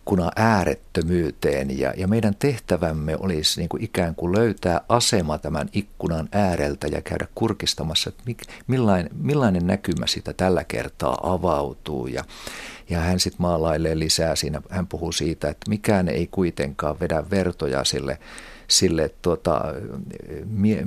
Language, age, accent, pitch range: Finnish, 50-69, native, 80-100 Hz